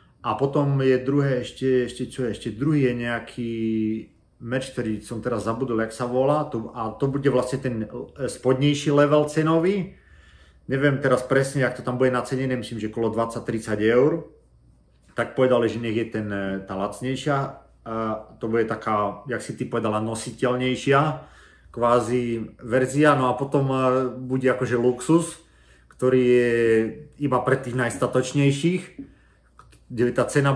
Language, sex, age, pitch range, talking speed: Slovak, male, 40-59, 105-130 Hz, 145 wpm